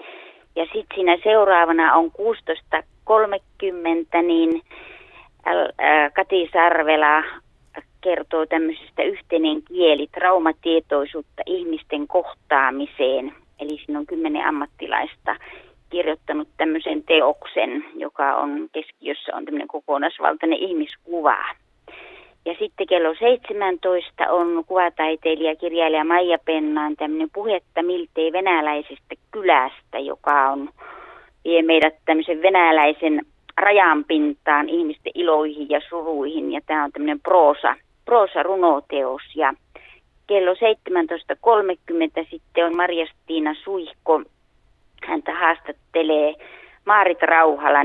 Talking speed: 90 wpm